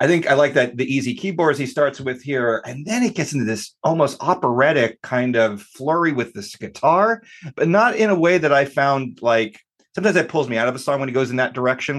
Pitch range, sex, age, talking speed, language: 110-160 Hz, male, 30-49, 245 wpm, English